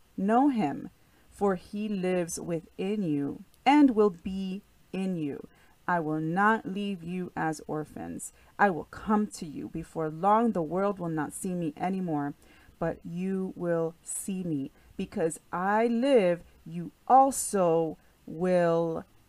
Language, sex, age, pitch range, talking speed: English, female, 30-49, 170-225 Hz, 135 wpm